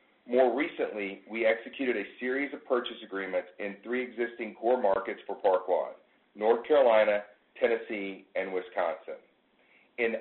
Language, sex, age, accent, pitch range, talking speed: English, male, 40-59, American, 100-130 Hz, 135 wpm